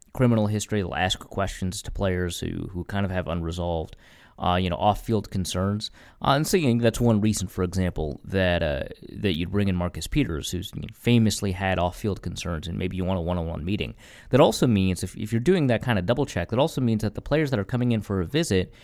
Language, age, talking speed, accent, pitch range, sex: English, 30-49, 225 wpm, American, 95-115 Hz, male